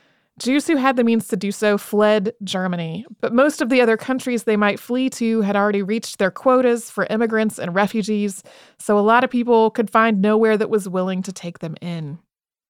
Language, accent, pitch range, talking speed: English, American, 185-225 Hz, 210 wpm